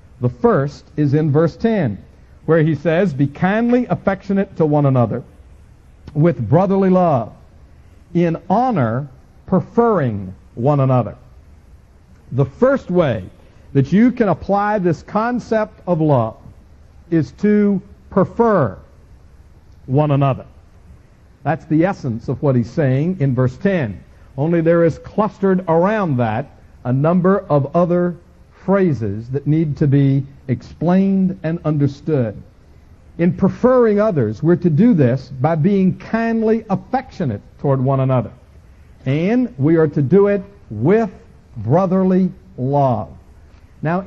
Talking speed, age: 125 wpm, 60-79